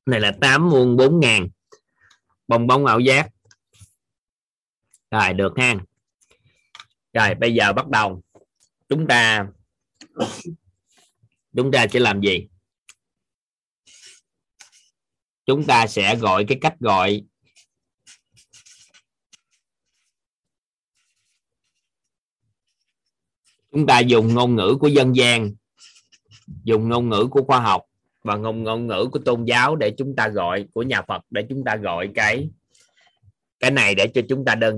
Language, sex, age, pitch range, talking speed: Vietnamese, male, 20-39, 105-130 Hz, 125 wpm